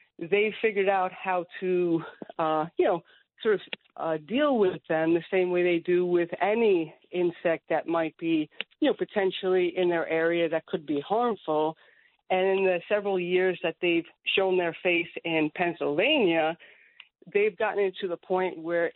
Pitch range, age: 170-215 Hz, 50-69